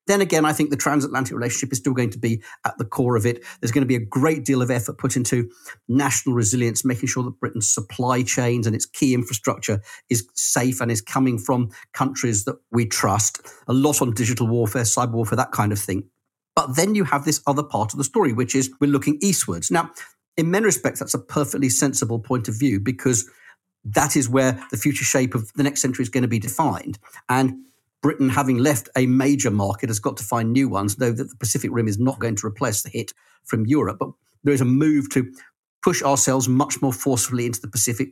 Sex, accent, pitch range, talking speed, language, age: male, British, 120-140 Hz, 225 wpm, English, 40-59